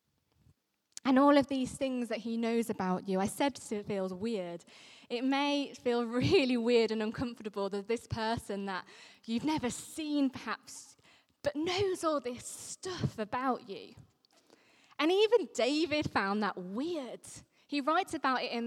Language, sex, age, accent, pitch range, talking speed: English, female, 20-39, British, 225-300 Hz, 155 wpm